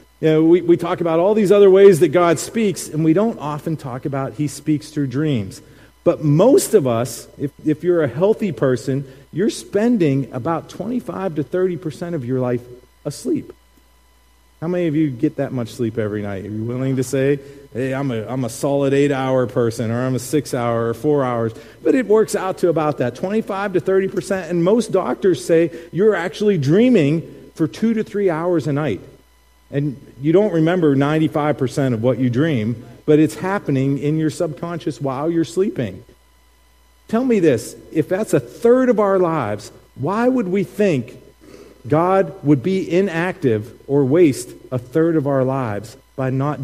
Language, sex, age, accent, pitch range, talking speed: English, male, 40-59, American, 125-175 Hz, 185 wpm